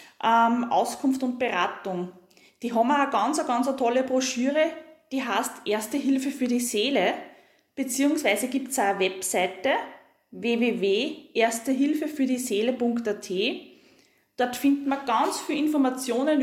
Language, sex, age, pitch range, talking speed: German, female, 20-39, 220-275 Hz, 115 wpm